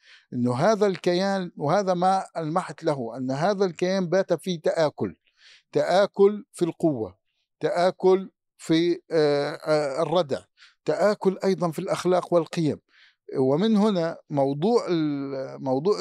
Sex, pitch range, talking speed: male, 155-190 Hz, 105 wpm